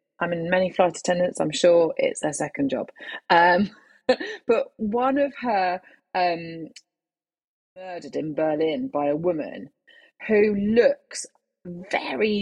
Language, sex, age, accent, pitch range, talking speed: English, female, 30-49, British, 180-255 Hz, 125 wpm